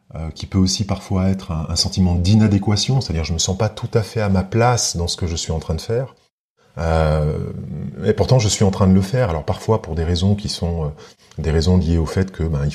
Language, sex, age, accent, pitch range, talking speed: French, male, 30-49, French, 85-110 Hz, 275 wpm